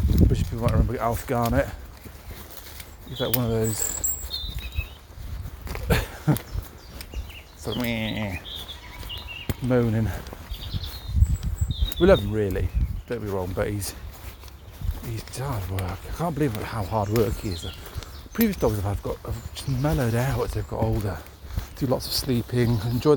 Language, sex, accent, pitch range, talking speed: English, male, British, 85-115 Hz, 125 wpm